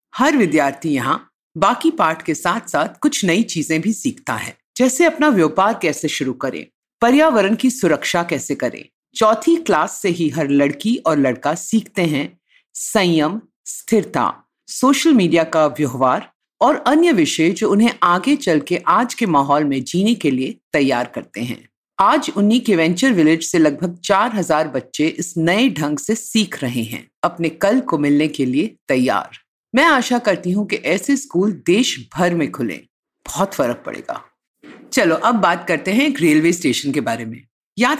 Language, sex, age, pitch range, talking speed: Hindi, female, 50-69, 155-245 Hz, 170 wpm